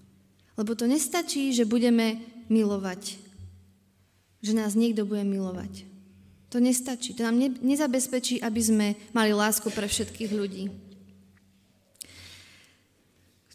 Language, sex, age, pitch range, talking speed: Slovak, female, 20-39, 185-240 Hz, 105 wpm